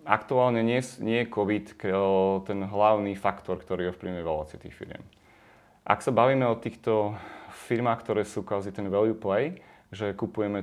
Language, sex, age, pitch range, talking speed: Slovak, male, 30-49, 95-110 Hz, 145 wpm